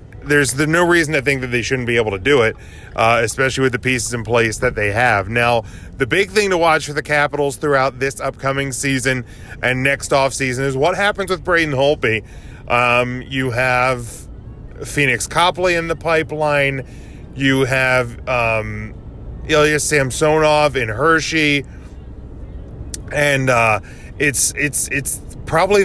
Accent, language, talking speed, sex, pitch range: American, English, 155 wpm, male, 125-150 Hz